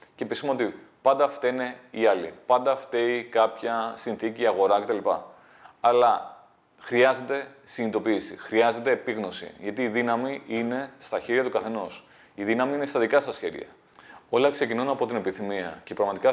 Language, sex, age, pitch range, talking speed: Greek, male, 30-49, 110-135 Hz, 145 wpm